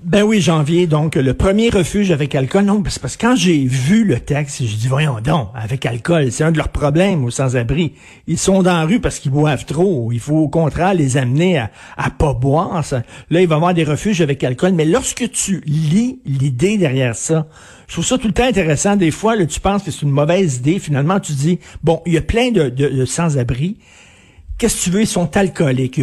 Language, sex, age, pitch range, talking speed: French, male, 50-69, 135-185 Hz, 235 wpm